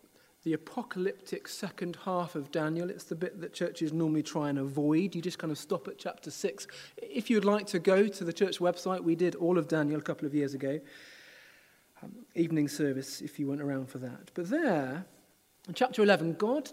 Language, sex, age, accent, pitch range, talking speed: English, male, 40-59, British, 150-205 Hz, 205 wpm